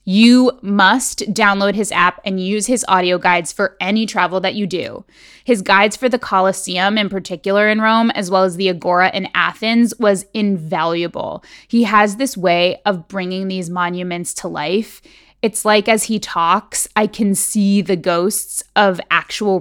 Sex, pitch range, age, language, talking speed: female, 180-210 Hz, 20-39, English, 170 wpm